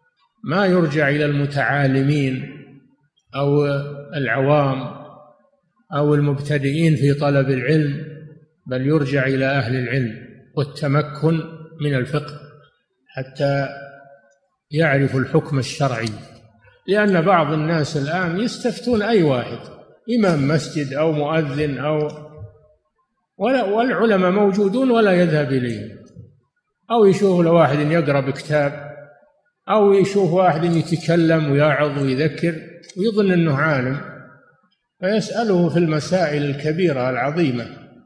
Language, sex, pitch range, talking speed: Arabic, male, 140-190 Hz, 95 wpm